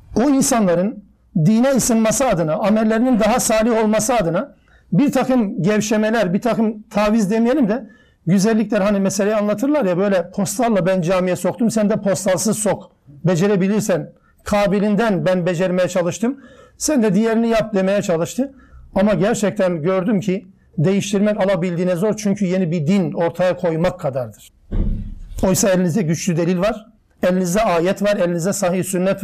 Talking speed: 140 wpm